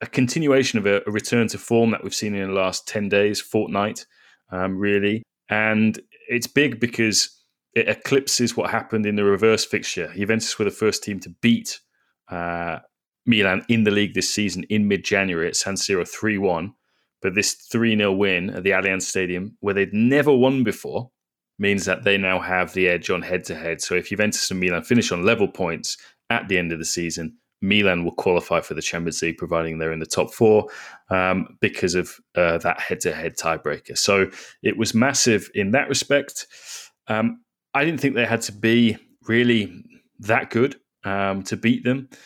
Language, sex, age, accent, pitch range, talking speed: English, male, 20-39, British, 95-115 Hz, 185 wpm